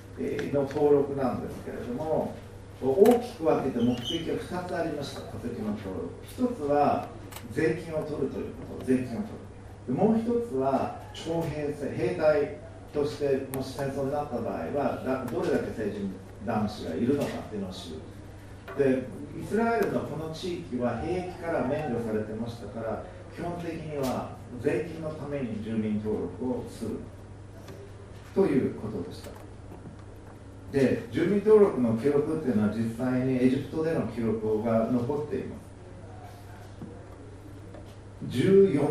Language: Japanese